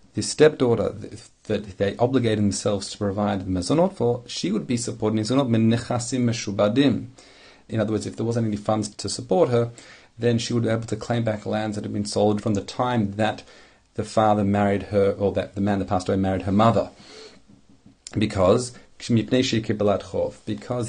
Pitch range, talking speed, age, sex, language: 105-120 Hz, 170 wpm, 40-59, male, English